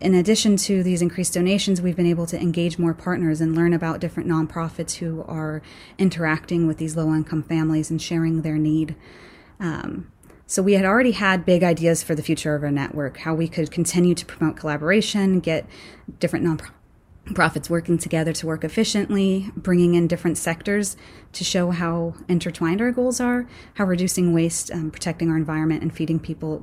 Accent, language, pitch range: American, English, 155-180 Hz